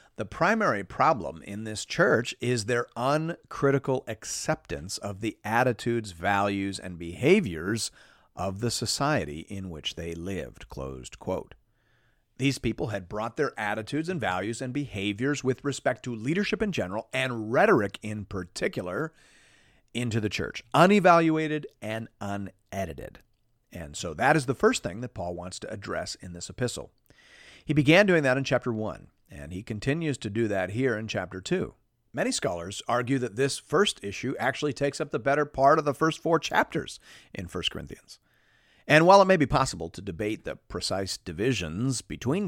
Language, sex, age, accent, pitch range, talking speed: English, male, 40-59, American, 95-145 Hz, 165 wpm